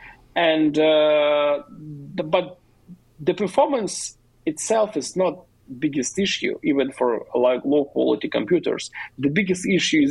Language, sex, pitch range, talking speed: English, male, 130-185 Hz, 125 wpm